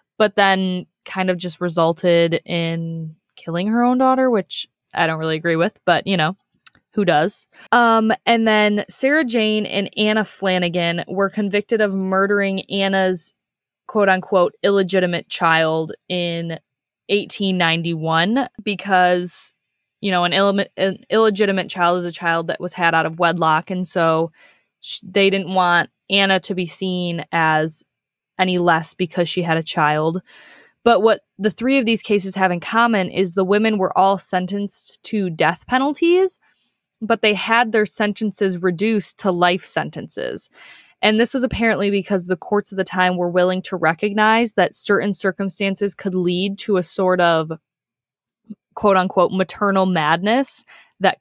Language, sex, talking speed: English, female, 150 wpm